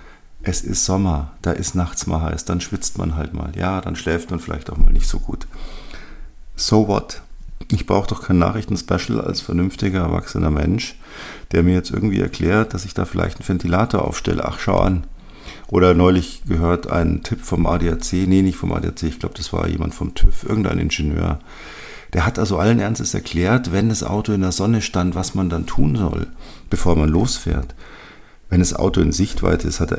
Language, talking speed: German, 195 wpm